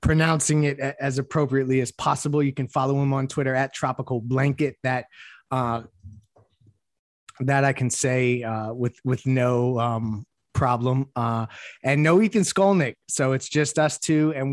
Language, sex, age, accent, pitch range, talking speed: English, male, 20-39, American, 125-145 Hz, 155 wpm